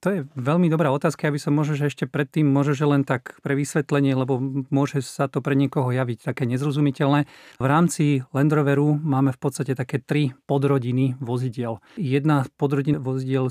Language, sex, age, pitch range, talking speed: Slovak, male, 40-59, 125-150 Hz, 175 wpm